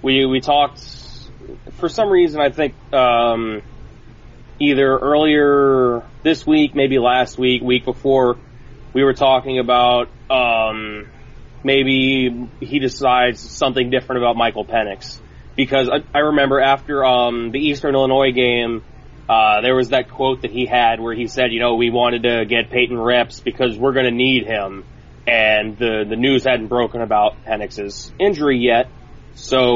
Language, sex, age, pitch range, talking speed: English, male, 20-39, 120-135 Hz, 155 wpm